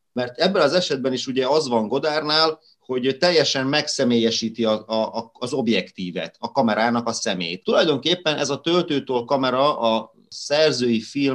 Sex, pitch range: male, 115-145 Hz